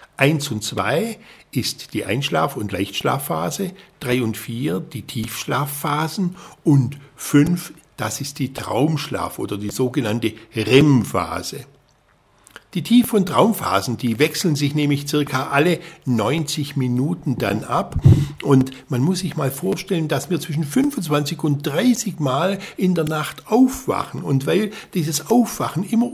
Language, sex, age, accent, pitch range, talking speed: German, male, 60-79, German, 115-165 Hz, 135 wpm